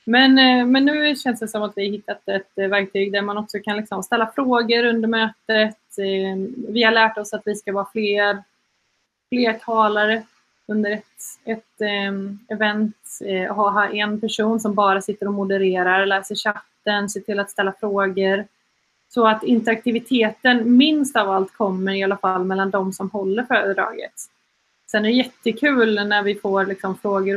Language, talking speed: Swedish, 165 wpm